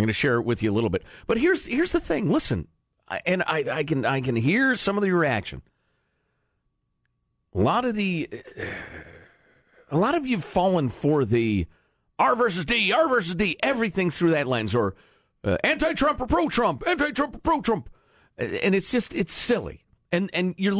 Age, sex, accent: 50-69, male, American